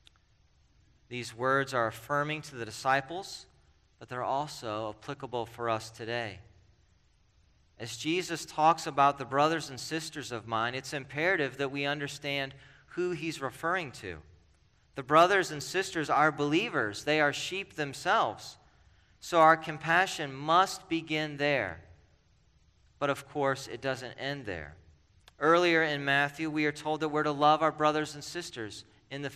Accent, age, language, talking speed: American, 40-59, English, 145 wpm